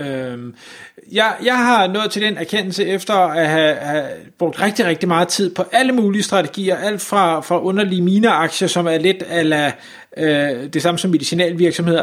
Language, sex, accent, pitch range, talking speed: Danish, male, native, 165-210 Hz, 175 wpm